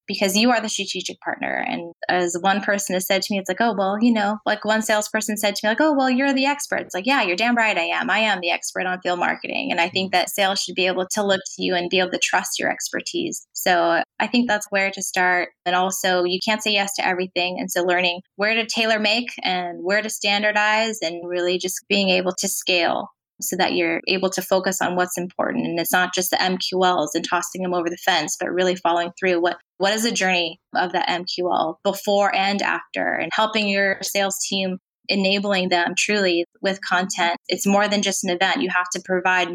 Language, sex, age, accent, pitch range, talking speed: English, female, 20-39, American, 180-200 Hz, 235 wpm